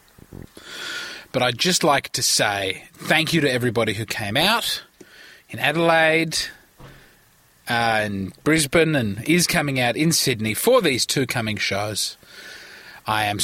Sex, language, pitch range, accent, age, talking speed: male, English, 110-170 Hz, Australian, 20-39, 140 wpm